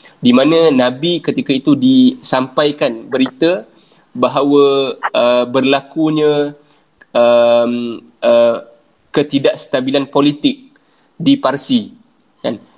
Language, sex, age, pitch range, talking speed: Malay, male, 20-39, 125-150 Hz, 80 wpm